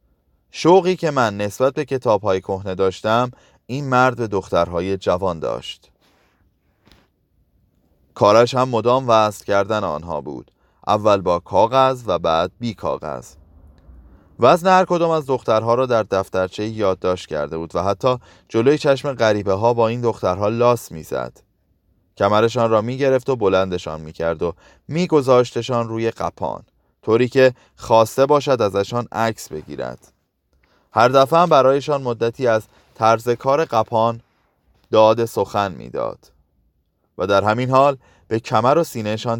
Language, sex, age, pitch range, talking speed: Persian, male, 30-49, 95-125 Hz, 135 wpm